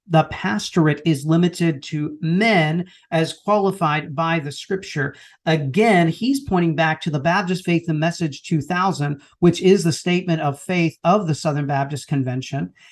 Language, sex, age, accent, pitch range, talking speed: English, male, 40-59, American, 160-195 Hz, 155 wpm